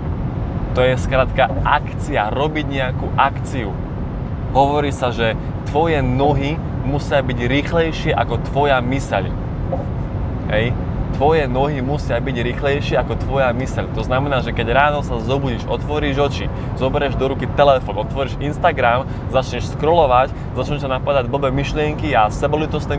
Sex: male